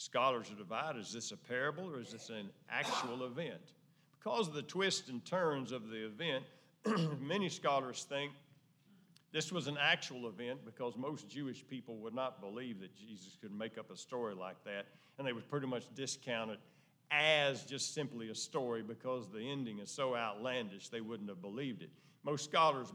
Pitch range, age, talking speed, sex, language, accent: 125-160 Hz, 50-69, 185 wpm, male, English, American